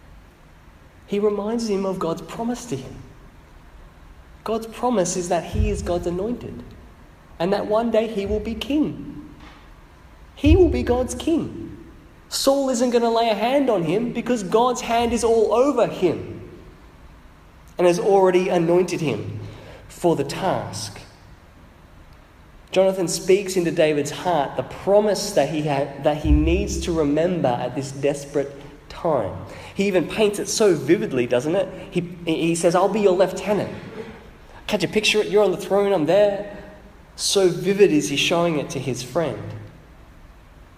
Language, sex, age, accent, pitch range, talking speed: English, male, 20-39, Australian, 125-195 Hz, 155 wpm